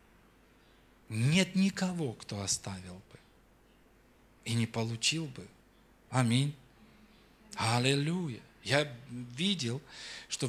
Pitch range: 115-145 Hz